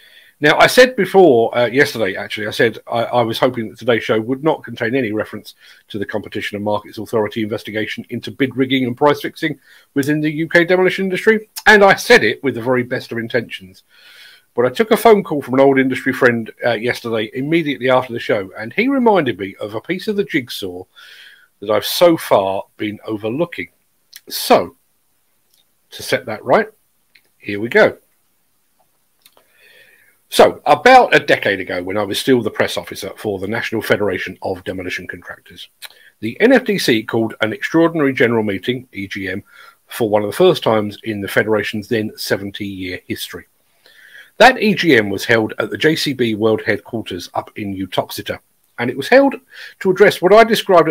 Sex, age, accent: male, 50-69, British